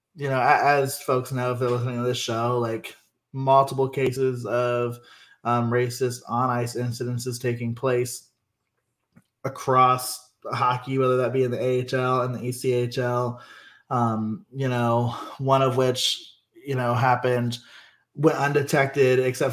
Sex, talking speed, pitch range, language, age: male, 135 wpm, 120-135 Hz, English, 20-39